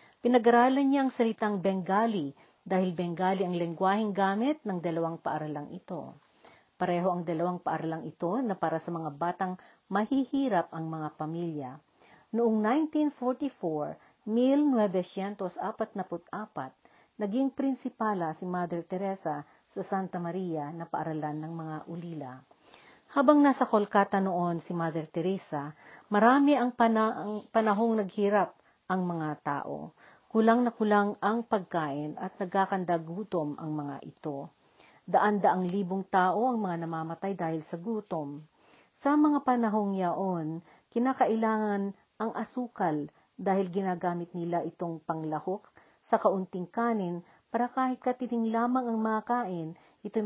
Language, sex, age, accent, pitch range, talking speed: Filipino, female, 50-69, native, 170-225 Hz, 125 wpm